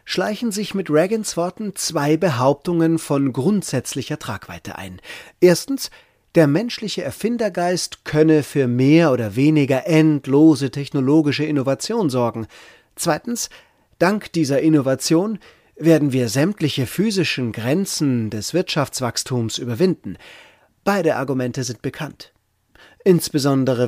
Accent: German